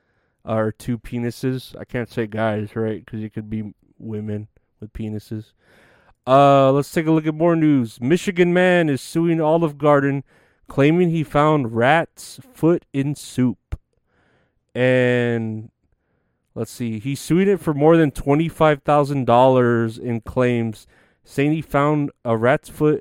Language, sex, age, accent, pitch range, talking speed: English, male, 30-49, American, 115-150 Hz, 145 wpm